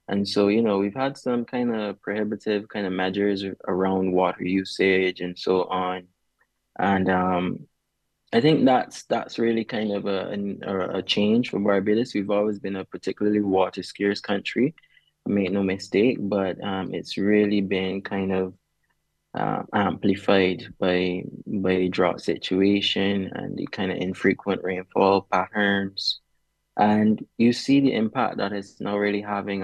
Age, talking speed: 20-39, 155 wpm